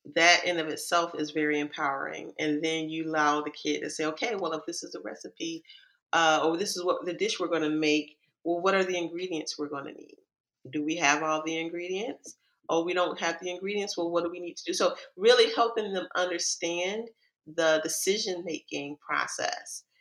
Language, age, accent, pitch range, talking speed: English, 40-59, American, 155-190 Hz, 205 wpm